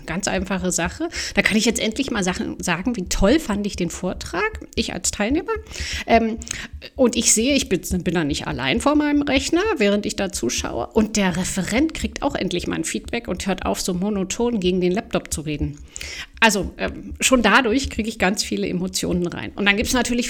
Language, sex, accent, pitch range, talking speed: German, female, German, 180-245 Hz, 205 wpm